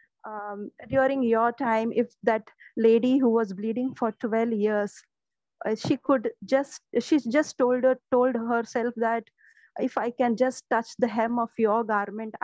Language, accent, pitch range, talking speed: English, Indian, 220-250 Hz, 165 wpm